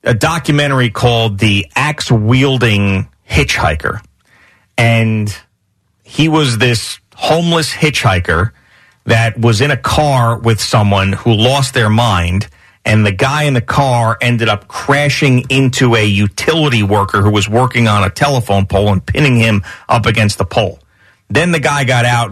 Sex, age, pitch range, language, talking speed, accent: male, 40-59, 105-130 Hz, English, 150 wpm, American